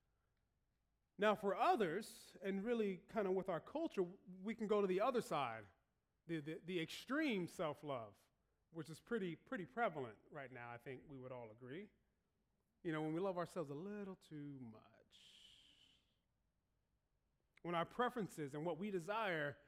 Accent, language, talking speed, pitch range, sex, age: American, English, 160 wpm, 160-230 Hz, male, 30-49